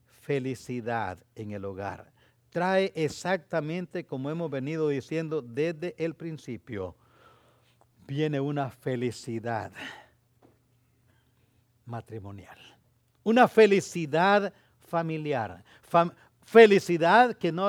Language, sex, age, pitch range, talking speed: English, male, 60-79, 120-160 Hz, 80 wpm